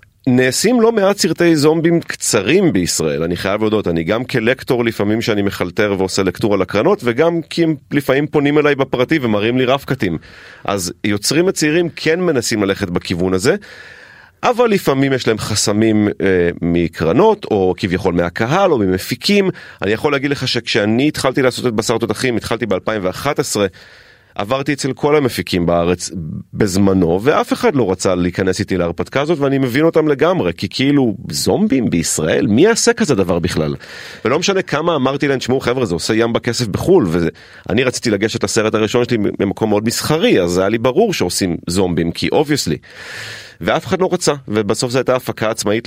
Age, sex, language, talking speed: 30-49, male, Hebrew, 165 wpm